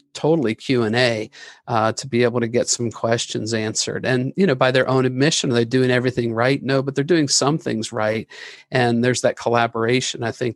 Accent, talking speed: American, 200 wpm